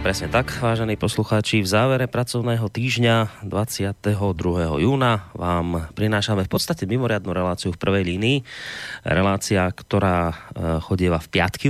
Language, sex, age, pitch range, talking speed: Slovak, male, 30-49, 95-115 Hz, 125 wpm